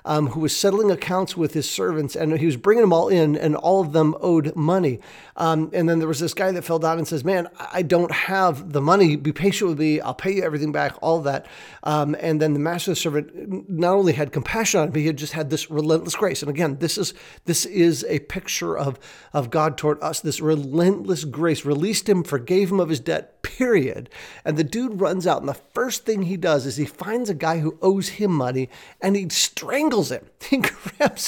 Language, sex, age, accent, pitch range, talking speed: English, male, 40-59, American, 150-190 Hz, 230 wpm